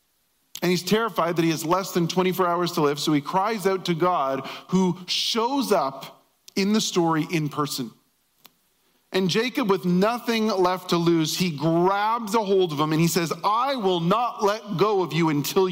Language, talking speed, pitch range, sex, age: English, 190 wpm, 165-195 Hz, male, 40-59